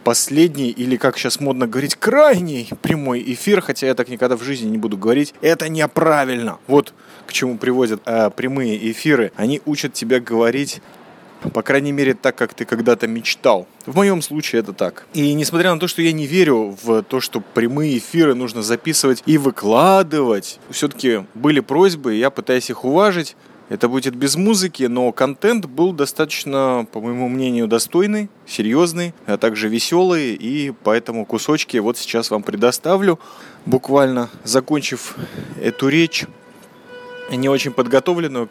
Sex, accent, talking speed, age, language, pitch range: male, native, 155 wpm, 20-39, Russian, 120-160 Hz